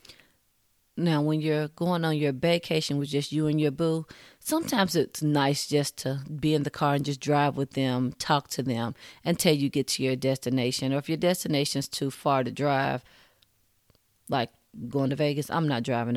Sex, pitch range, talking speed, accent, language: female, 130-155 Hz, 190 wpm, American, English